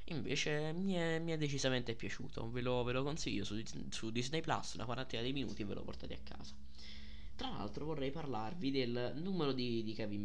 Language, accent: Italian, native